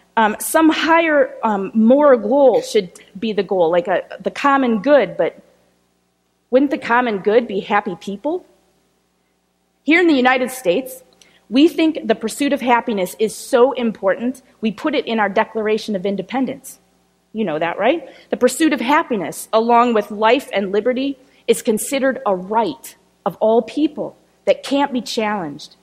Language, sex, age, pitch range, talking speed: English, female, 30-49, 215-275 Hz, 160 wpm